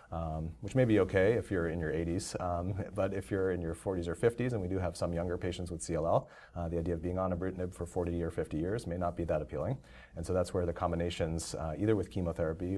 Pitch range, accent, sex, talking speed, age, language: 85-95 Hz, American, male, 265 wpm, 30-49, English